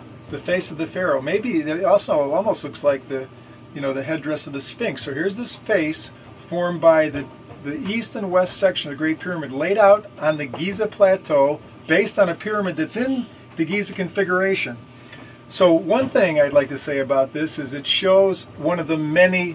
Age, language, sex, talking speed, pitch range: 40-59, English, male, 205 wpm, 135-175 Hz